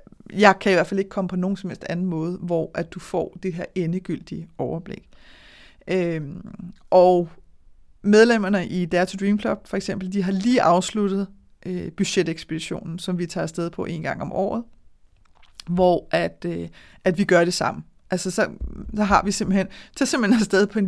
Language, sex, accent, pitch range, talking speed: Danish, female, native, 180-220 Hz, 185 wpm